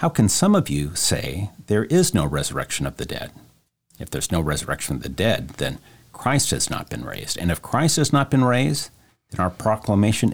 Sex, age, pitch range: male, 50-69, 80-105 Hz